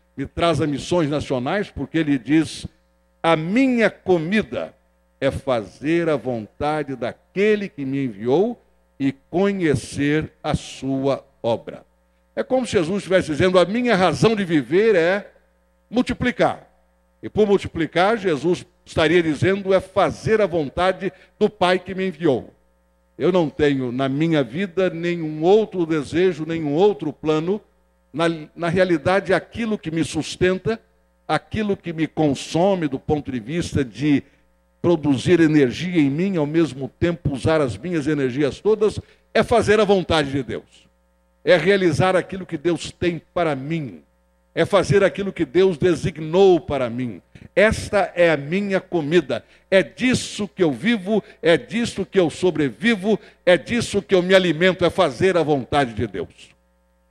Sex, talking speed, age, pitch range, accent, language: male, 150 wpm, 60-79, 135-185 Hz, Brazilian, Portuguese